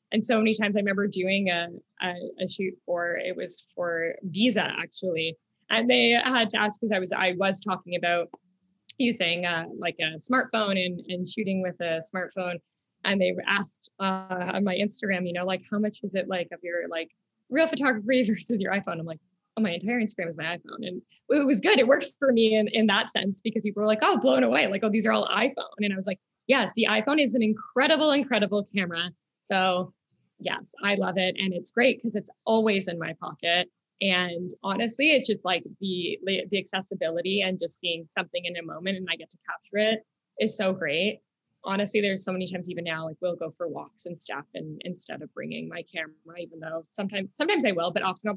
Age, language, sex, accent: 20-39, English, female, American